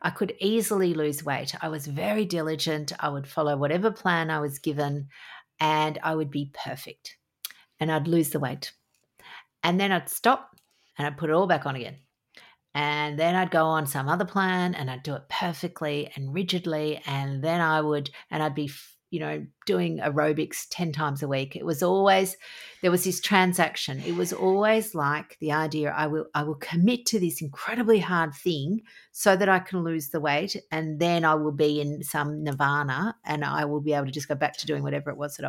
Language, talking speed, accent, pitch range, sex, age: English, 205 wpm, Australian, 145-180 Hz, female, 50-69